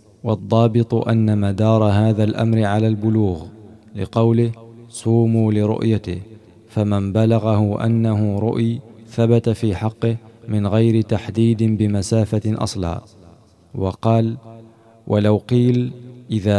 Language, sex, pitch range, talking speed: Arabic, male, 105-115 Hz, 95 wpm